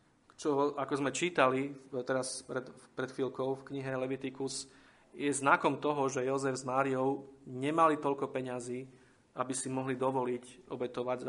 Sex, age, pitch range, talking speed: male, 30-49, 125-140 Hz, 140 wpm